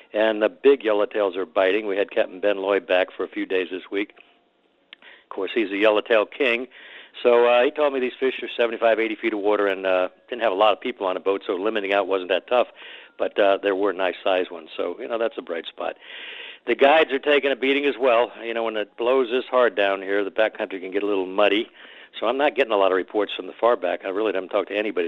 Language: English